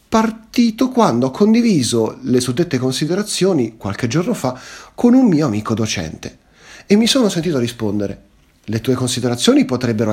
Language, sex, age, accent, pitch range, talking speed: Italian, male, 40-59, native, 110-170 Hz, 140 wpm